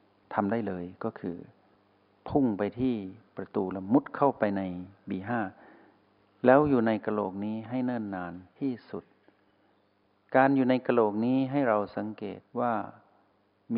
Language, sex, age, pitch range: Thai, male, 60-79, 100-115 Hz